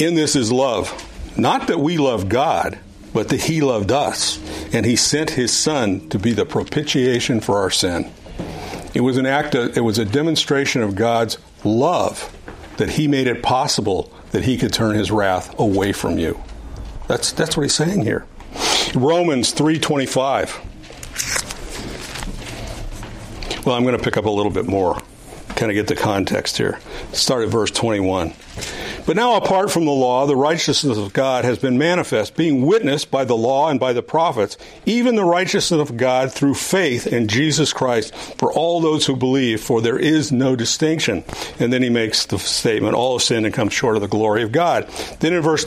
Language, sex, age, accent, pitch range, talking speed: English, male, 50-69, American, 110-150 Hz, 185 wpm